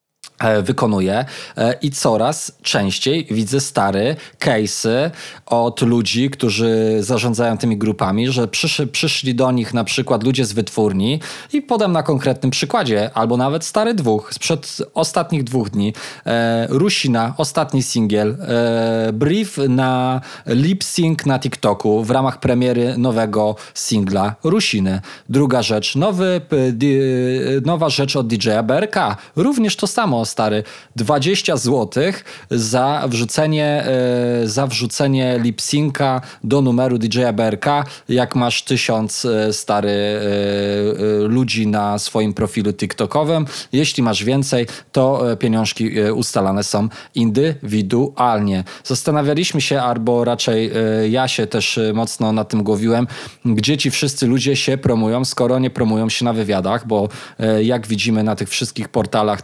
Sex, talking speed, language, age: male, 125 wpm, Polish, 20-39